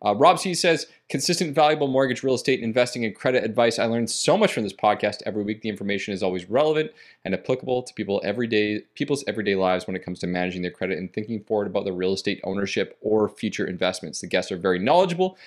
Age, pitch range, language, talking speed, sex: 30-49, 110-145 Hz, English, 225 wpm, male